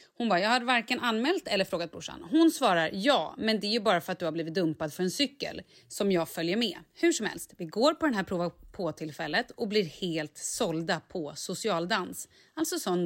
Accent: native